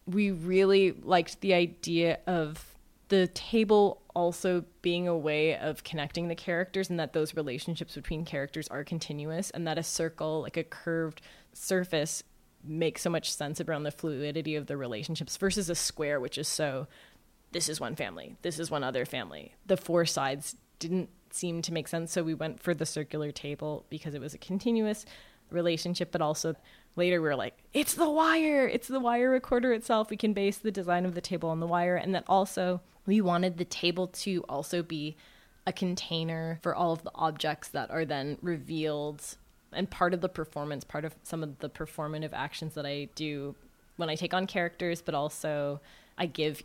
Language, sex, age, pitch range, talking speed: English, female, 20-39, 150-180 Hz, 190 wpm